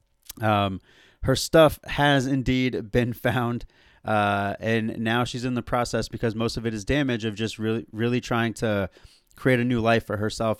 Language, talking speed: English, 180 wpm